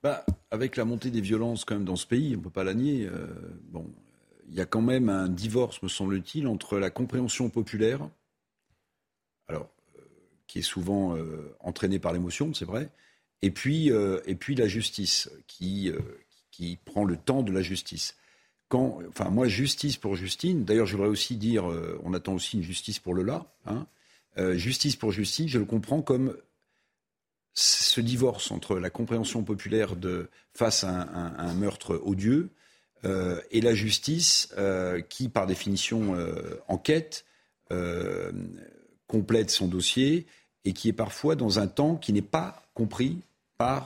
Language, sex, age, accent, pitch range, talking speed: French, male, 50-69, French, 95-125 Hz, 175 wpm